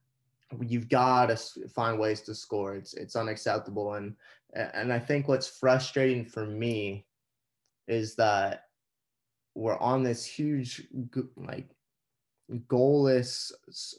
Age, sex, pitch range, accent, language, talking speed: 20-39, male, 105-125 Hz, American, English, 110 wpm